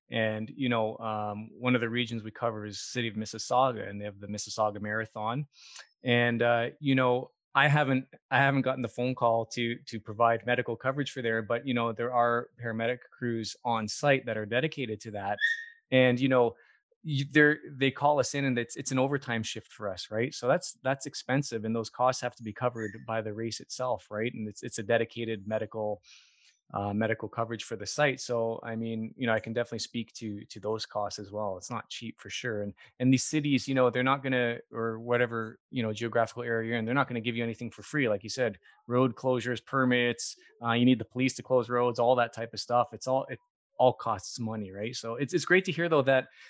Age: 20-39